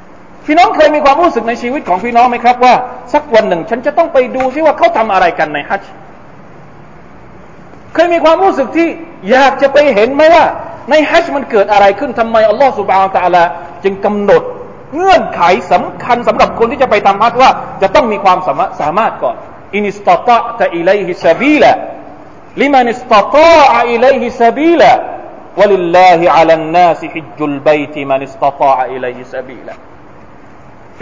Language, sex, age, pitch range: Thai, male, 40-59, 180-300 Hz